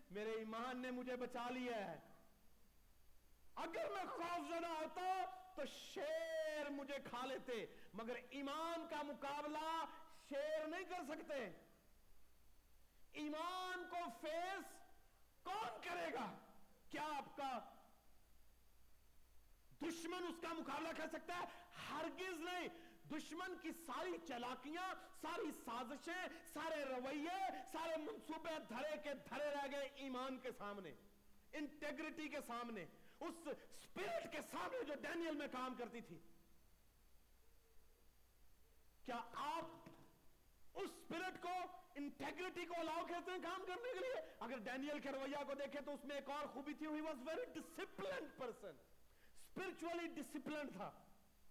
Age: 50-69